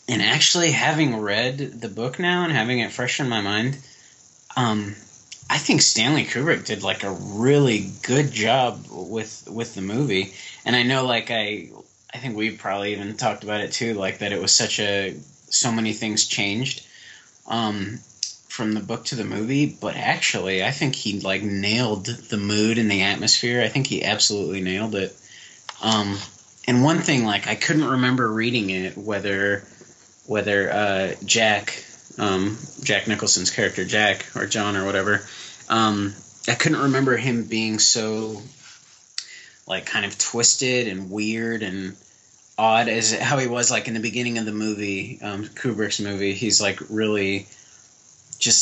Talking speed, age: 165 wpm, 20-39